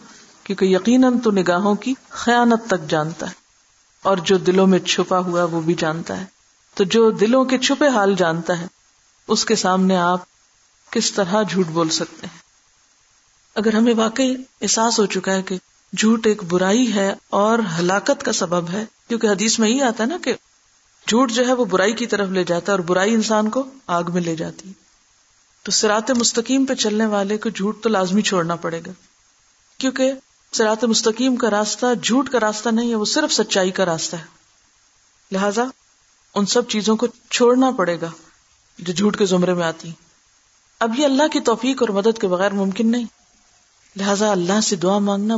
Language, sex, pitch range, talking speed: Urdu, female, 180-230 Hz, 170 wpm